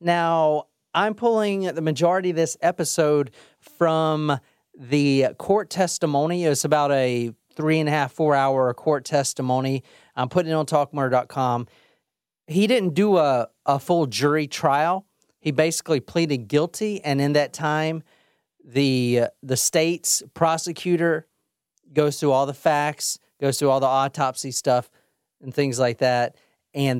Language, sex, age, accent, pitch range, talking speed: English, male, 30-49, American, 125-155 Hz, 140 wpm